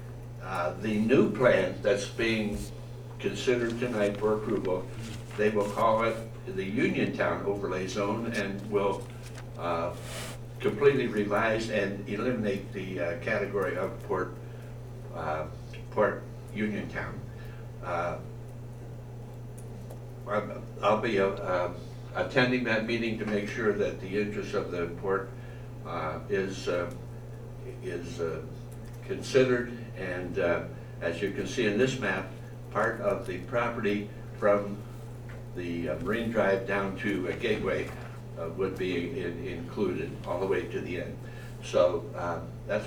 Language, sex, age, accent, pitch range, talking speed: English, male, 60-79, American, 105-120 Hz, 130 wpm